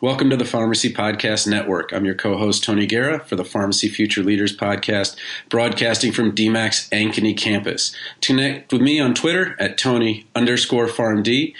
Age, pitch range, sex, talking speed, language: 40-59, 105-125 Hz, male, 160 wpm, English